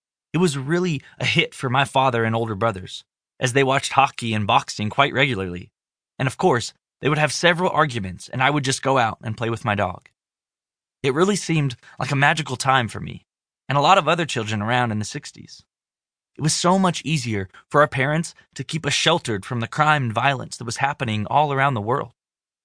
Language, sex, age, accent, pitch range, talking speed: English, male, 20-39, American, 125-155 Hz, 215 wpm